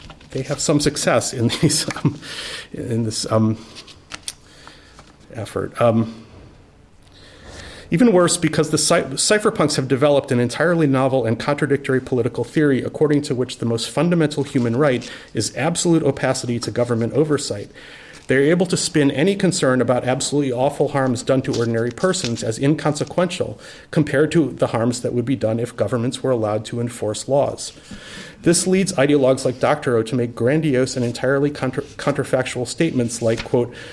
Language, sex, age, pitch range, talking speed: English, male, 40-59, 115-150 Hz, 150 wpm